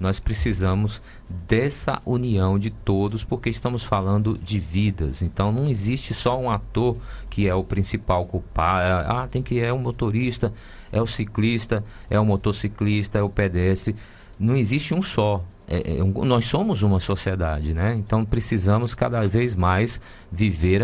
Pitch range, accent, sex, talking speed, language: 95-115 Hz, Brazilian, male, 155 wpm, Portuguese